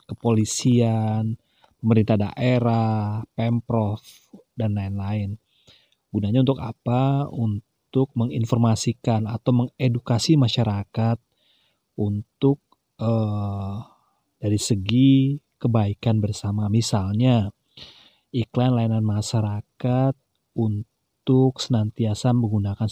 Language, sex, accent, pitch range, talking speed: Indonesian, male, native, 105-125 Hz, 70 wpm